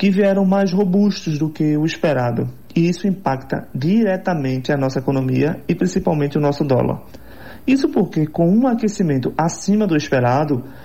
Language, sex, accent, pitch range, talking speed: Portuguese, male, Brazilian, 140-185 Hz, 155 wpm